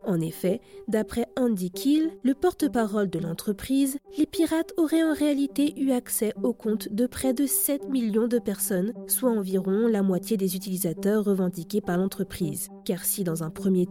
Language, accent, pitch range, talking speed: French, French, 190-265 Hz, 170 wpm